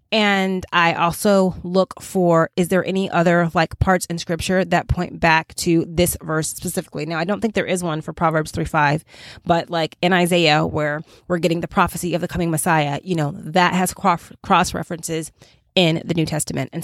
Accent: American